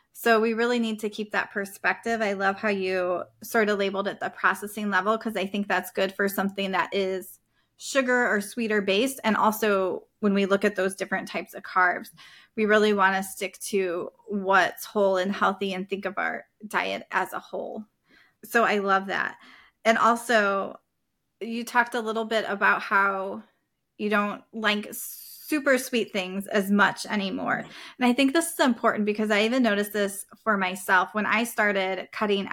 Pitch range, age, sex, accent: 195-225 Hz, 20-39, female, American